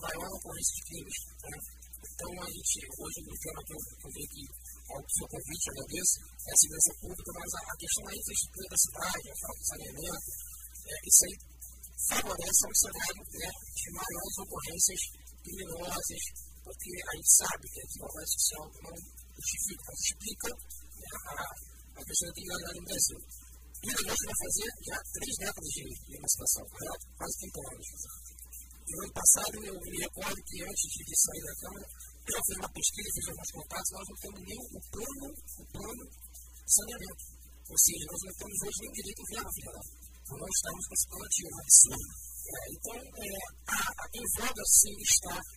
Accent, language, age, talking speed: American, Portuguese, 50-69, 160 wpm